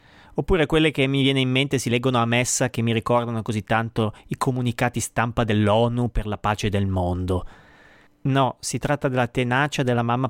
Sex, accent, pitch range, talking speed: male, native, 120-175 Hz, 185 wpm